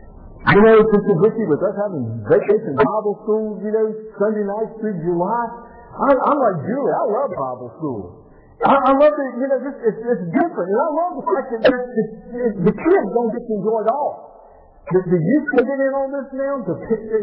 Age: 50-69